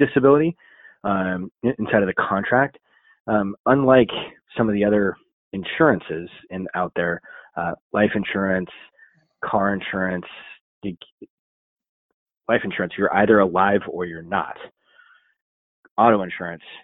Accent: American